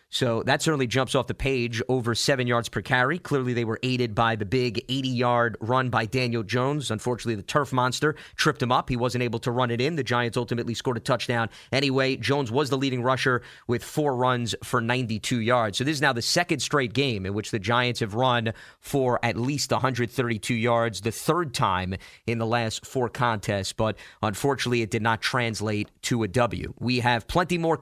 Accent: American